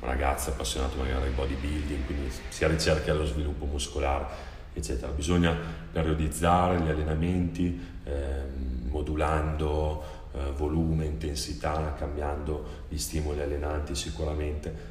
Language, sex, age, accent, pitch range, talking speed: Italian, male, 30-49, native, 70-80 Hz, 105 wpm